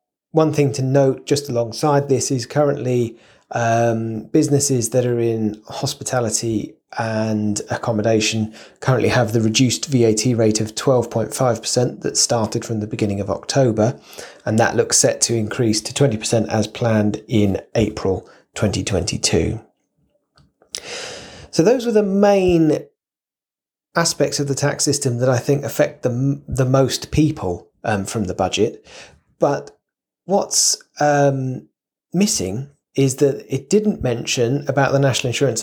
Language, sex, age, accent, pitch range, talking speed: English, male, 30-49, British, 115-140 Hz, 135 wpm